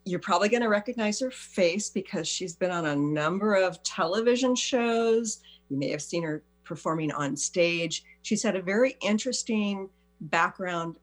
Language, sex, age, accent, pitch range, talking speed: English, female, 50-69, American, 165-235 Hz, 160 wpm